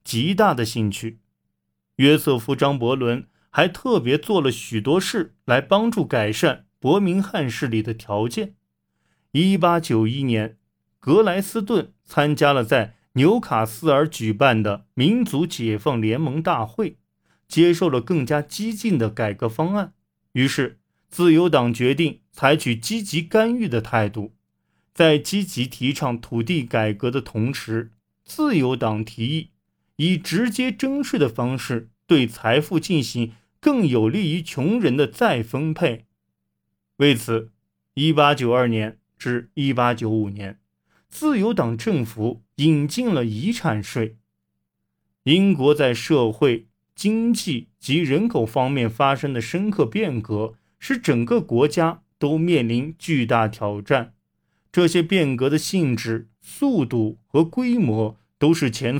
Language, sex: Chinese, male